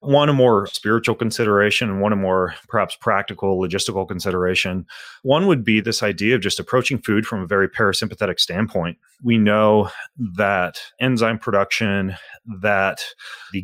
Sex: male